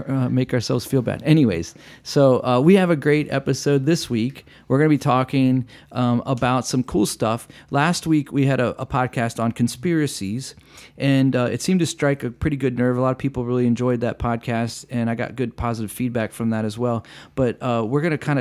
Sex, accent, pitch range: male, American, 115-140 Hz